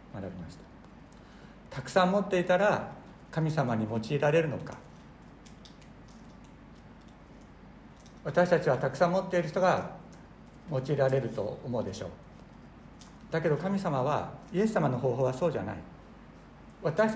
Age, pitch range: 60-79, 125-175 Hz